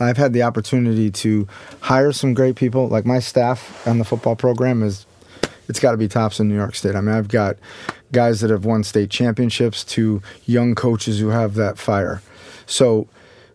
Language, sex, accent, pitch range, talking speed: English, male, American, 110-135 Hz, 195 wpm